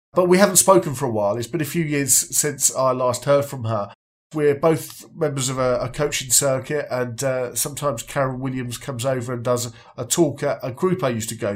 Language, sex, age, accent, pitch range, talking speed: English, male, 40-59, British, 120-155 Hz, 235 wpm